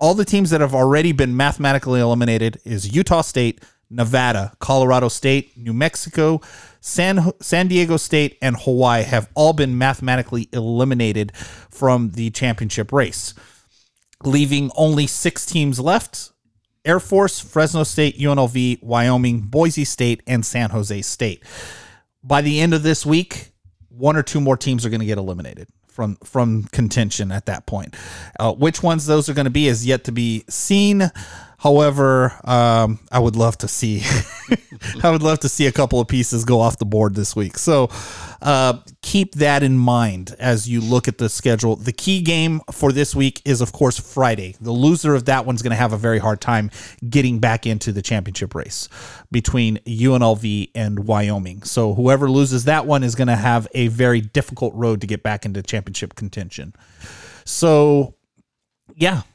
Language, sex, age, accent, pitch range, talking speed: English, male, 30-49, American, 115-150 Hz, 175 wpm